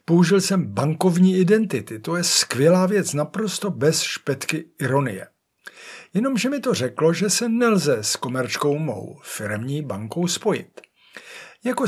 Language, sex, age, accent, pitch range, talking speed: Czech, male, 60-79, native, 140-195 Hz, 130 wpm